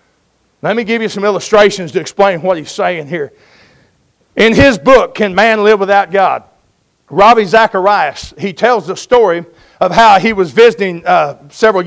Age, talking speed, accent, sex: 50-69, 165 wpm, American, male